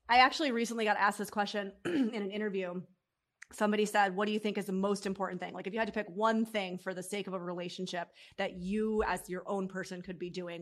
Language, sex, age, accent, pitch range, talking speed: English, female, 30-49, American, 185-215 Hz, 250 wpm